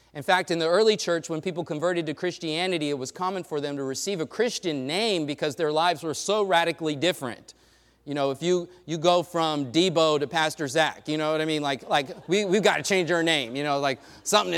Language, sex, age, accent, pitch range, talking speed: English, male, 30-49, American, 150-190 Hz, 235 wpm